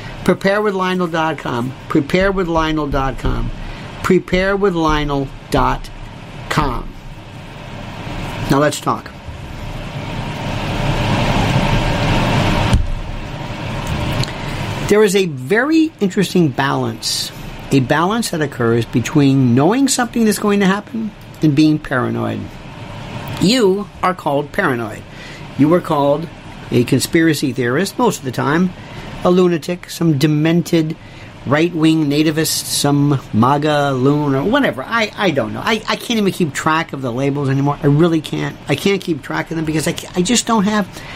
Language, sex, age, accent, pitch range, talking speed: English, male, 50-69, American, 135-180 Hz, 115 wpm